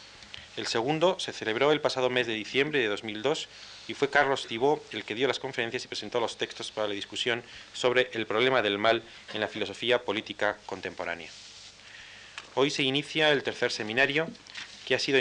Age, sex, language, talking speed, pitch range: 30-49, male, Spanish, 180 wpm, 105-130 Hz